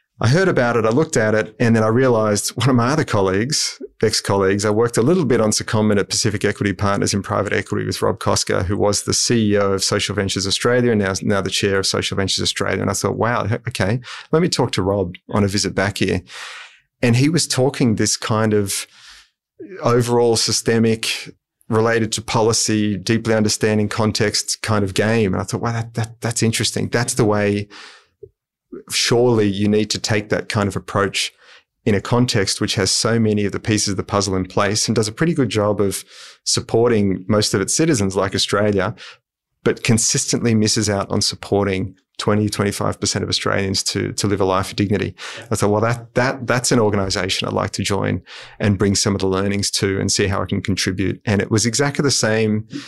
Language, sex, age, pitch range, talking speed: English, male, 30-49, 100-115 Hz, 205 wpm